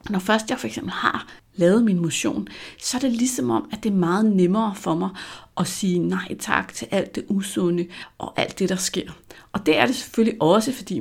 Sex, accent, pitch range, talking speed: female, native, 170-220 Hz, 225 wpm